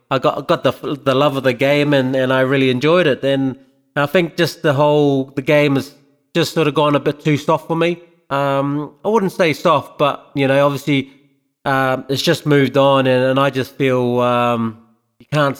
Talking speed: 215 wpm